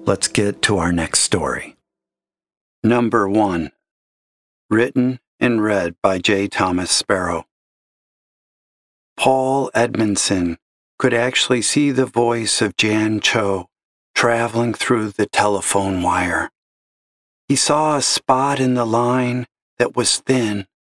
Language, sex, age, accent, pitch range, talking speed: English, male, 50-69, American, 100-130 Hz, 115 wpm